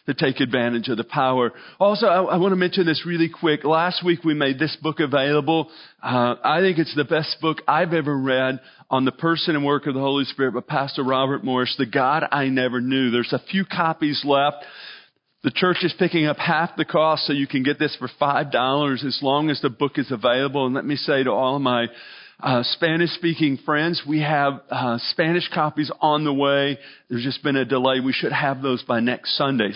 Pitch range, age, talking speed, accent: 130-160 Hz, 40-59, 220 wpm, American